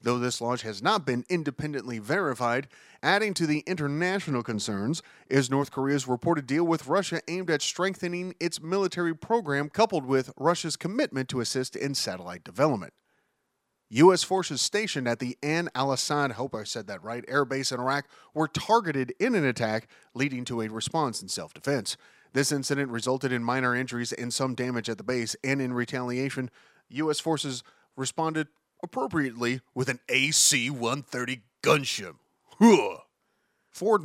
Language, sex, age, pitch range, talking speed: English, male, 30-49, 125-160 Hz, 155 wpm